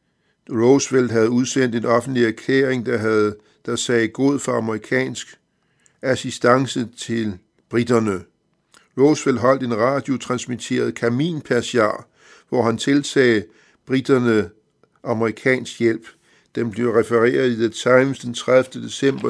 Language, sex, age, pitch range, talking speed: Danish, male, 60-79, 115-130 Hz, 110 wpm